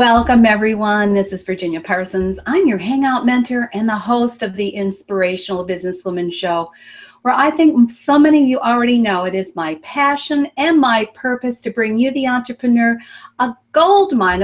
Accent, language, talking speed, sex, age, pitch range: American, English, 170 wpm, female, 40-59, 200-260 Hz